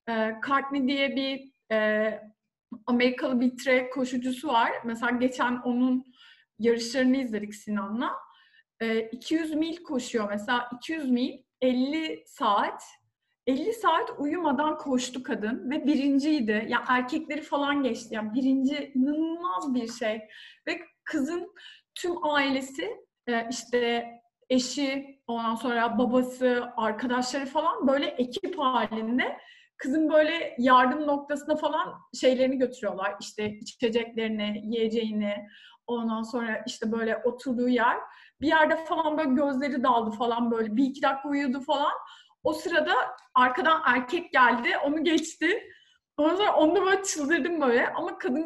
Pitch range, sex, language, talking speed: 235-300 Hz, female, Turkish, 125 wpm